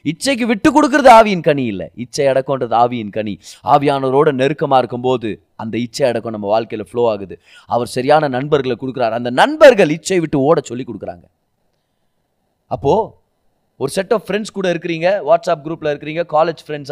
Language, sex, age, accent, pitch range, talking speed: Tamil, male, 30-49, native, 120-170 Hz, 130 wpm